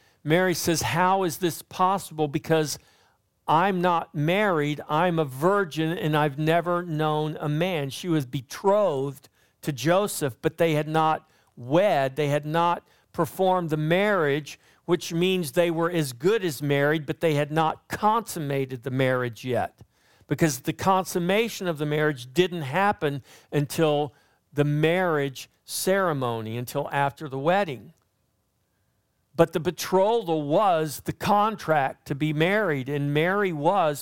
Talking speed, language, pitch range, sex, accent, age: 140 wpm, English, 135-175 Hz, male, American, 50-69